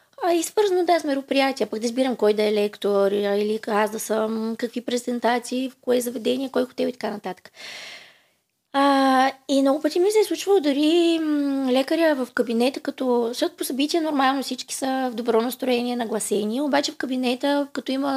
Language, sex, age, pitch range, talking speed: Bulgarian, female, 20-39, 225-305 Hz, 180 wpm